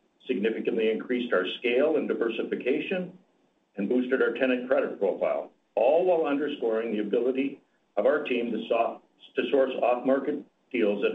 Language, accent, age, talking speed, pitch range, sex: English, American, 60-79, 135 wpm, 120-140 Hz, male